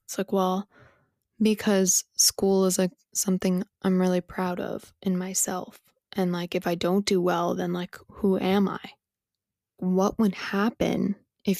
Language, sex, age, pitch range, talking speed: English, female, 20-39, 180-205 Hz, 155 wpm